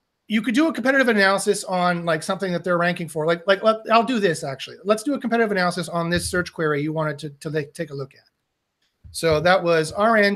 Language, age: English, 30-49